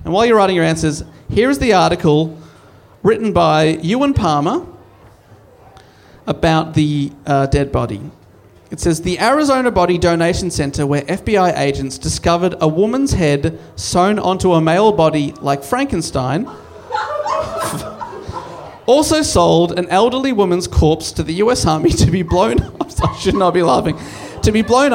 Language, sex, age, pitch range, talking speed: English, male, 30-49, 150-195 Hz, 150 wpm